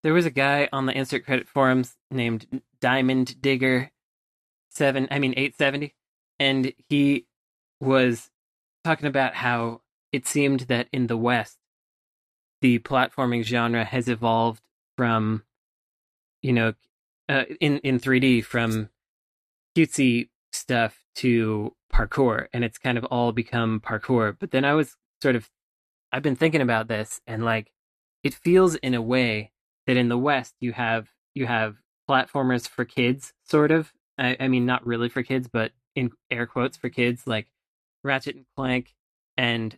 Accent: American